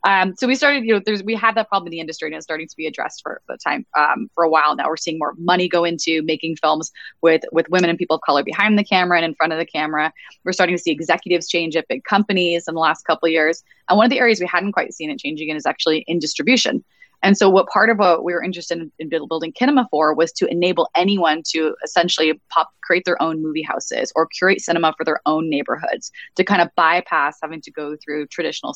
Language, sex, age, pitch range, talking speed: English, female, 20-39, 155-180 Hz, 260 wpm